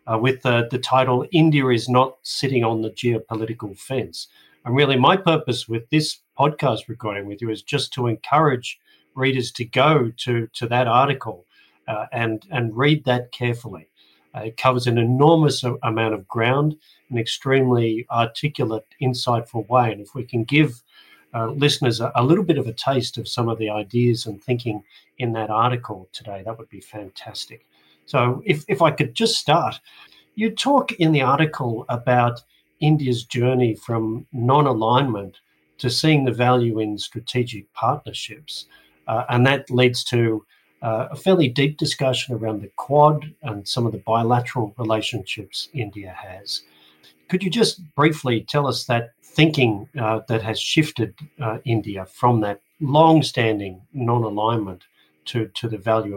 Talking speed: 160 wpm